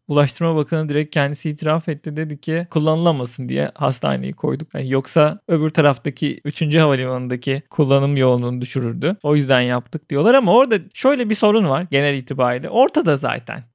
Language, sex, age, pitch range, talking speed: Turkish, male, 40-59, 145-210 Hz, 155 wpm